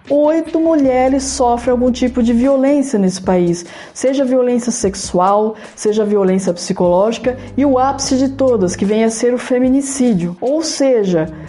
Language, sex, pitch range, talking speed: Portuguese, female, 195-255 Hz, 145 wpm